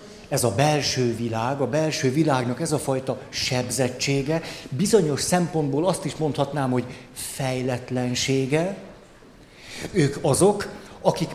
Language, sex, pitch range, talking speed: Hungarian, male, 135-170 Hz, 110 wpm